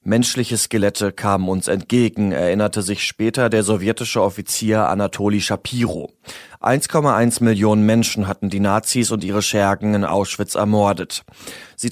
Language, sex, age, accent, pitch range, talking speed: German, male, 30-49, German, 100-115 Hz, 130 wpm